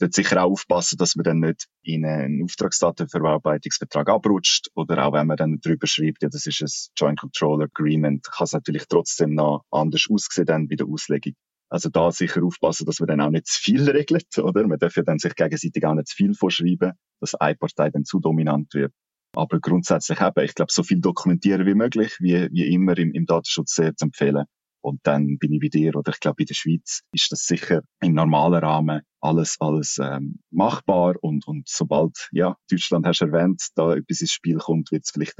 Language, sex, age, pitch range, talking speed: German, male, 30-49, 75-95 Hz, 210 wpm